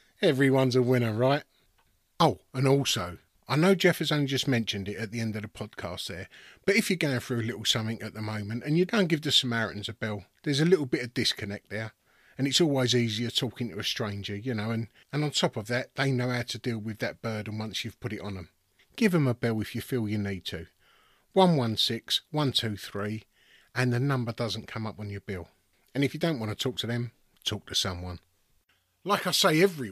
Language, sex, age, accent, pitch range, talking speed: English, male, 30-49, British, 110-150 Hz, 230 wpm